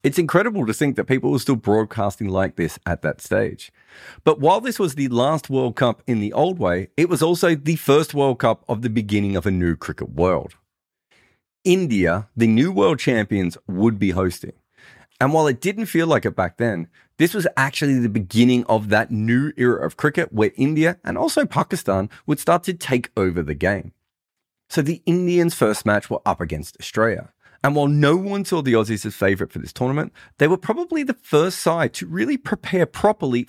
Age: 30-49